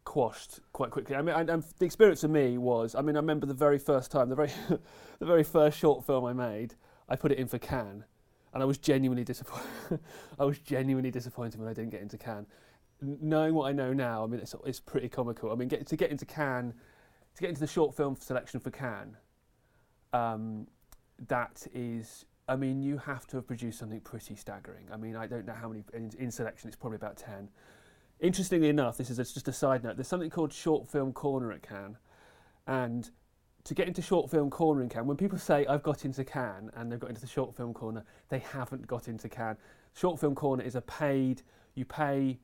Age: 30-49